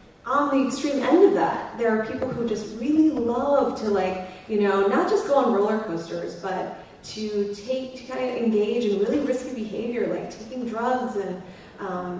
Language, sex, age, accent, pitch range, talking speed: English, female, 20-39, American, 190-255 Hz, 190 wpm